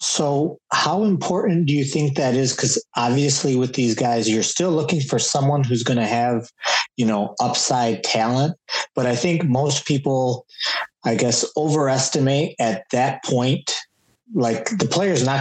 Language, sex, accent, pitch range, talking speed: English, male, American, 110-145 Hz, 165 wpm